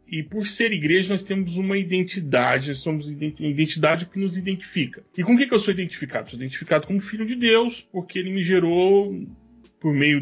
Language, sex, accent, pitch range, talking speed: Portuguese, male, Brazilian, 135-180 Hz, 195 wpm